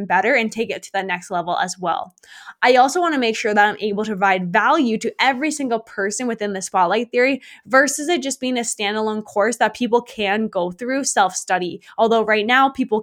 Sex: female